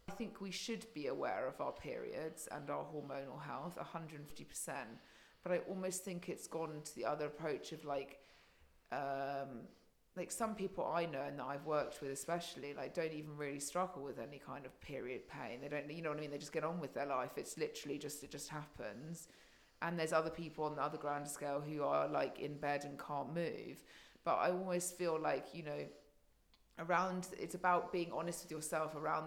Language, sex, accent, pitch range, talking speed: English, female, British, 145-170 Hz, 215 wpm